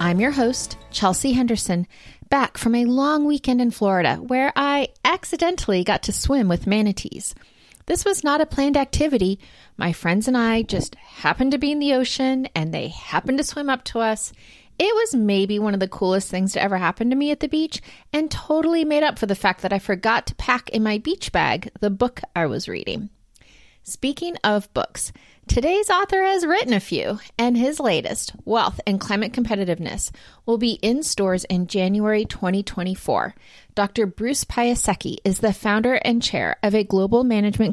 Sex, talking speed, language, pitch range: female, 185 wpm, English, 195-260 Hz